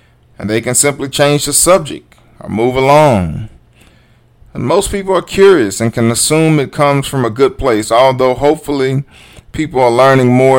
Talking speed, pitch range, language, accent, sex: 170 wpm, 110-135 Hz, English, American, male